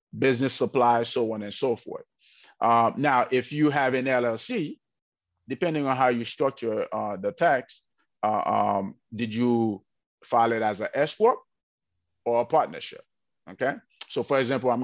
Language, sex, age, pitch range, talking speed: English, male, 30-49, 110-130 Hz, 160 wpm